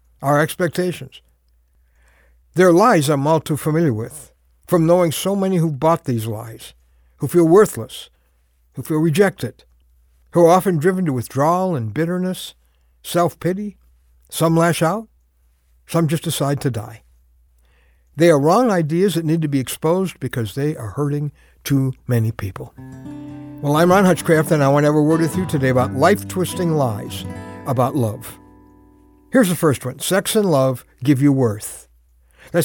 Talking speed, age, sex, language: 160 wpm, 60-79, male, English